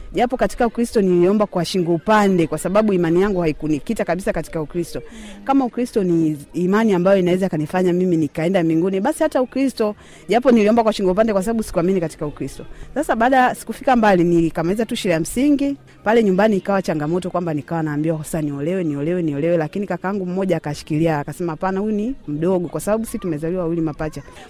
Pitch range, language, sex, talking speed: 165-225 Hz, Swahili, female, 185 wpm